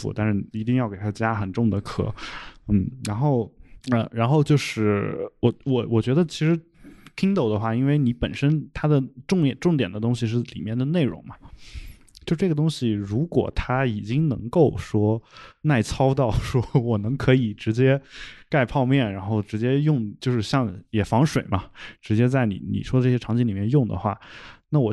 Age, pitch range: 20-39, 110-145 Hz